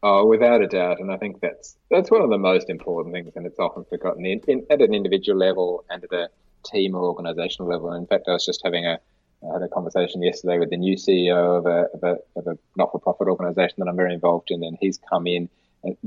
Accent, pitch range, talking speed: Australian, 85-100 Hz, 250 wpm